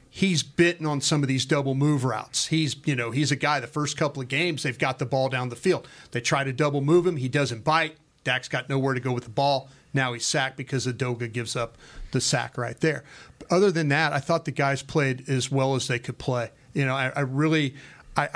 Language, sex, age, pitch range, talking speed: English, male, 40-59, 125-145 Hz, 250 wpm